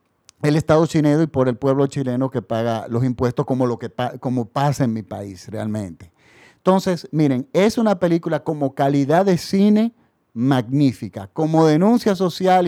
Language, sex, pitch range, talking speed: Spanish, male, 135-195 Hz, 160 wpm